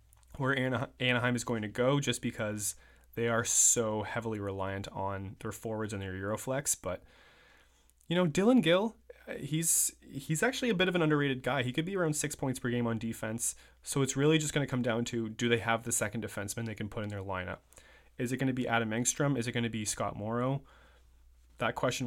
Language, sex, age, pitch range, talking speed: English, male, 20-39, 105-140 Hz, 220 wpm